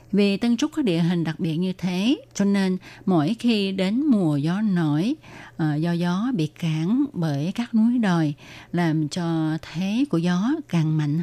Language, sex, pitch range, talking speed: Vietnamese, female, 155-205 Hz, 175 wpm